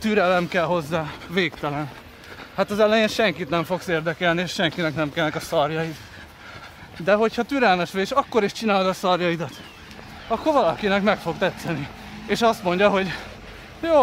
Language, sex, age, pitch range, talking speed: Hungarian, male, 30-49, 150-200 Hz, 160 wpm